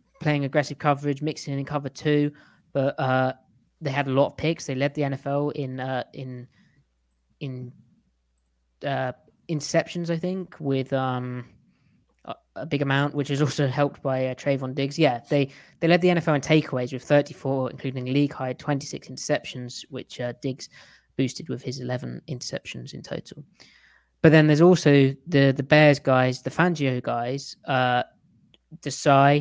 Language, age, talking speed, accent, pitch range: English, 20-39, 165 wpm, British, 130-150 Hz